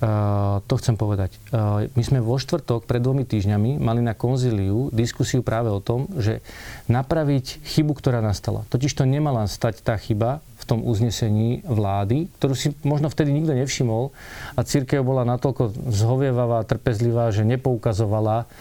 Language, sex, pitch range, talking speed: Slovak, male, 115-140 Hz, 150 wpm